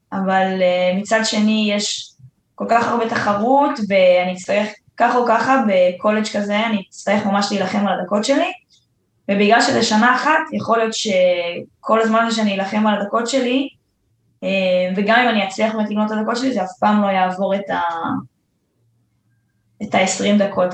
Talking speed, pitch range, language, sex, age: 160 wpm, 190-225 Hz, Hebrew, female, 10-29